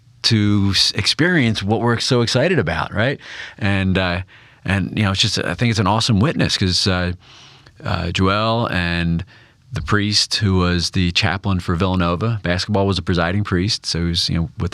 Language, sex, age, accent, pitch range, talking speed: English, male, 30-49, American, 90-115 Hz, 185 wpm